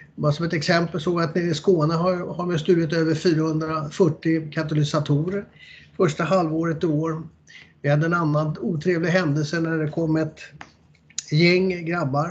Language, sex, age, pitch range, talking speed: Swedish, male, 30-49, 150-180 Hz, 155 wpm